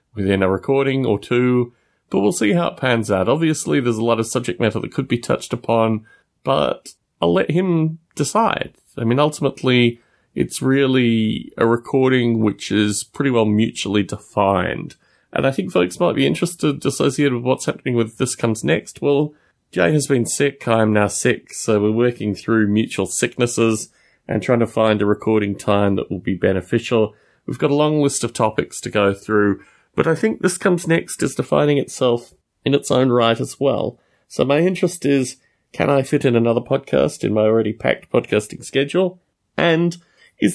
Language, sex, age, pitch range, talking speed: English, male, 30-49, 110-140 Hz, 185 wpm